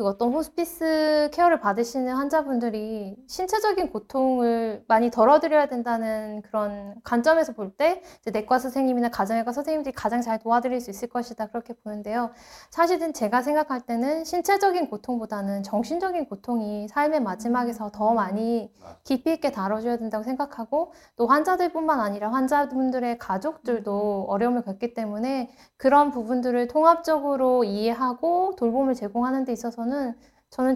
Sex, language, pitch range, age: female, Korean, 225-295 Hz, 20-39